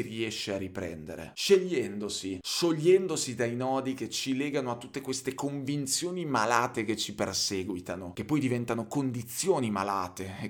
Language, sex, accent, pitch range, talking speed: Italian, male, native, 105-135 Hz, 135 wpm